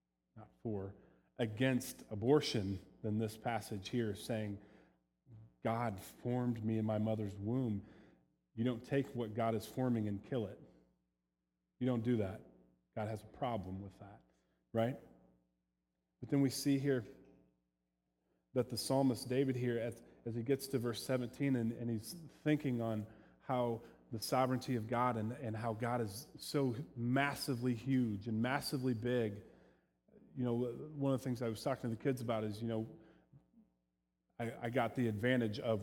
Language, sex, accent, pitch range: English, male, American, 105-125 Hz